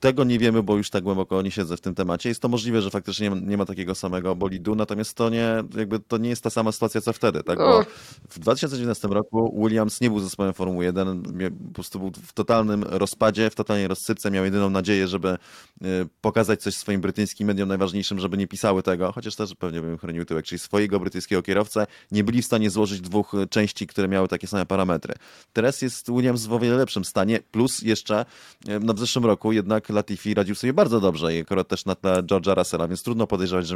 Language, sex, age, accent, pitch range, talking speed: Polish, male, 30-49, native, 95-110 Hz, 215 wpm